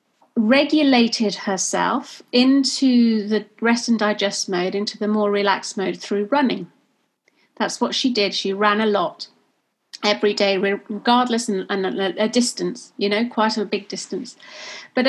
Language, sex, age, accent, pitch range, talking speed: English, female, 40-59, British, 210-265 Hz, 145 wpm